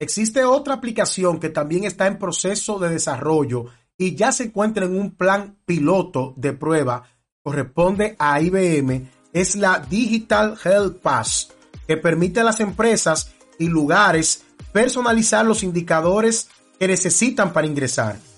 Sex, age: male, 30-49